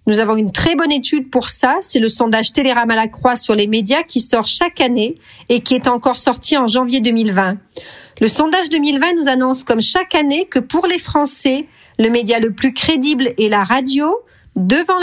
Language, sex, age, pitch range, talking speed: French, female, 40-59, 225-290 Hz, 205 wpm